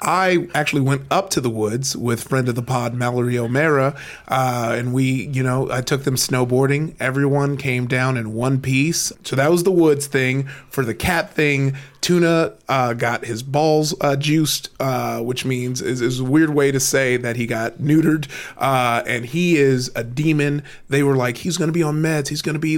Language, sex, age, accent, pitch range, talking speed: English, male, 30-49, American, 125-155 Hz, 205 wpm